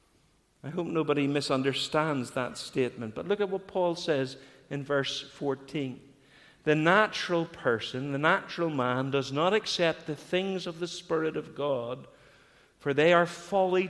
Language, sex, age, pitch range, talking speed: English, male, 50-69, 160-210 Hz, 150 wpm